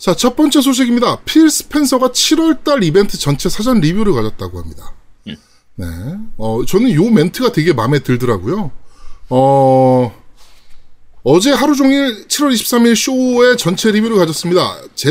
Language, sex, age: Korean, male, 20-39